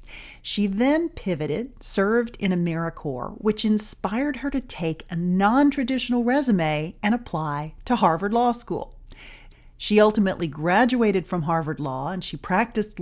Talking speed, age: 135 wpm, 40-59